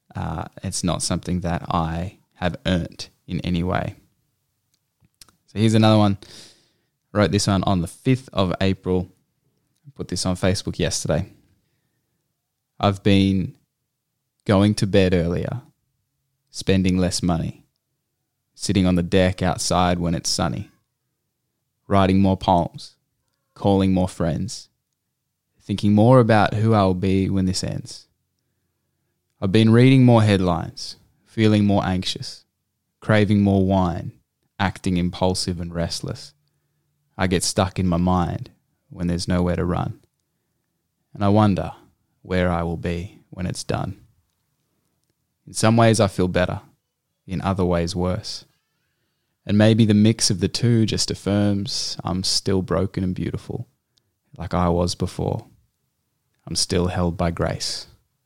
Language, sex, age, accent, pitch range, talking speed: English, male, 10-29, Australian, 90-110 Hz, 135 wpm